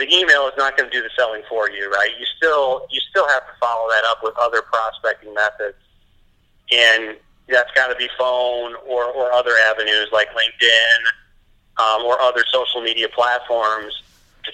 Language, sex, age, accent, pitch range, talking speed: English, male, 40-59, American, 110-125 Hz, 180 wpm